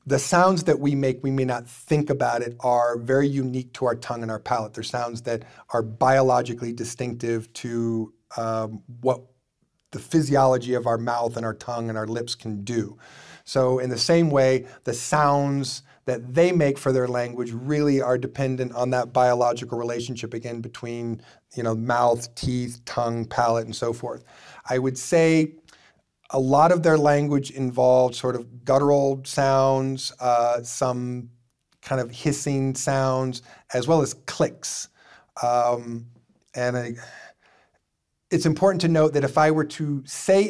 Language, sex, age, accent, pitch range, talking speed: Dutch, male, 40-59, American, 120-140 Hz, 160 wpm